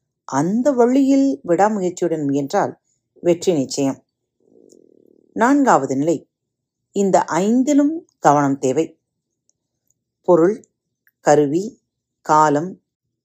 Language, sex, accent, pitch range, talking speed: Tamil, female, native, 145-245 Hz, 70 wpm